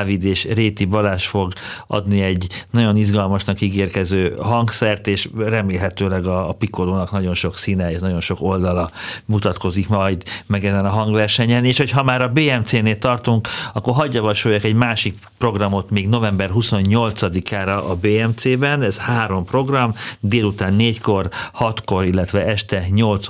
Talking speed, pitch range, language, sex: 135 wpm, 95-110 Hz, Hungarian, male